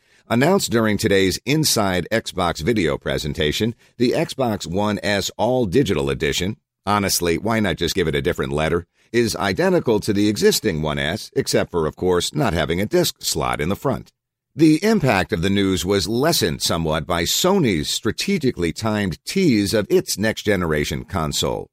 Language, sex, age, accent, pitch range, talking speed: English, male, 50-69, American, 85-125 Hz, 160 wpm